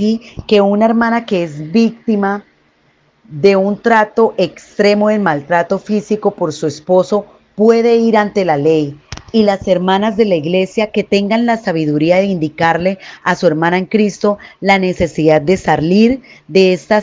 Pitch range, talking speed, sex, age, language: 165-215 Hz, 155 wpm, female, 30-49, Spanish